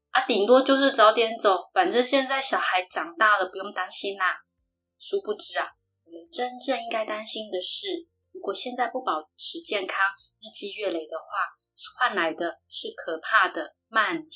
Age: 20-39